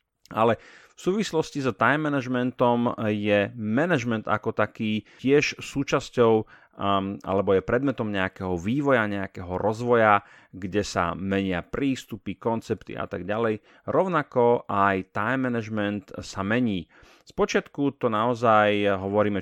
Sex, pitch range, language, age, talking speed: male, 95-115 Hz, Slovak, 30-49, 120 wpm